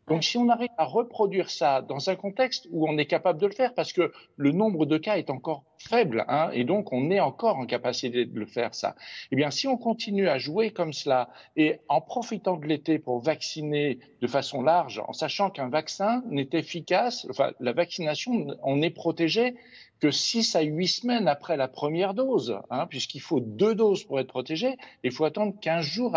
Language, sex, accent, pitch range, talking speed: French, male, French, 140-200 Hz, 210 wpm